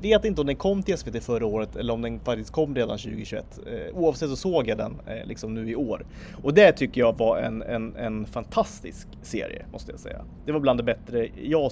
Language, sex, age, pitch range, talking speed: Swedish, male, 30-49, 115-155 Hz, 240 wpm